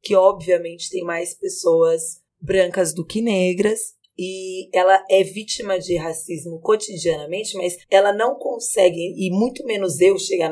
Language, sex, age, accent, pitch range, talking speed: Portuguese, female, 20-39, Brazilian, 175-220 Hz, 145 wpm